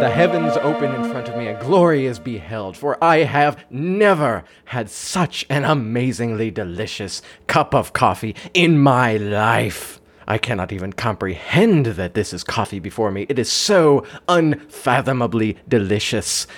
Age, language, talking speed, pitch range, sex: 30-49, English, 150 wpm, 85-140 Hz, male